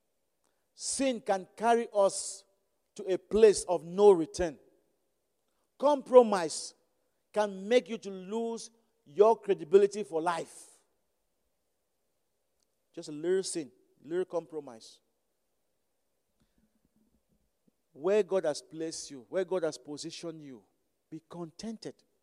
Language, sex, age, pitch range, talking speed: English, male, 50-69, 180-240 Hz, 105 wpm